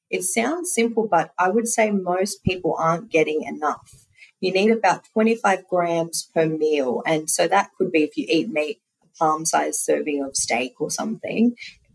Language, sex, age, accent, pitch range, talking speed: English, female, 30-49, Australian, 150-200 Hz, 180 wpm